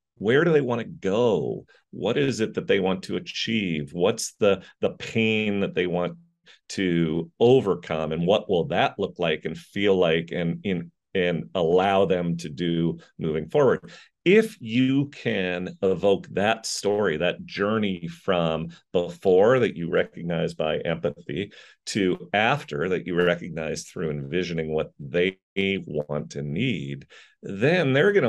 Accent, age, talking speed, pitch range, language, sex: American, 40-59, 155 wpm, 85-125 Hz, English, male